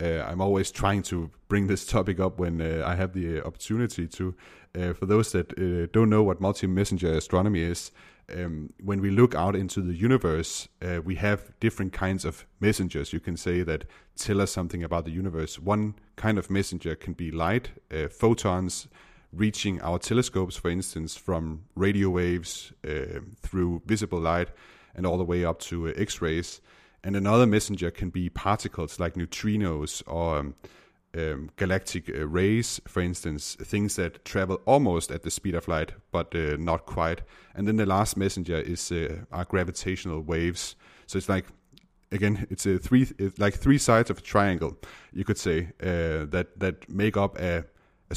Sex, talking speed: male, 180 wpm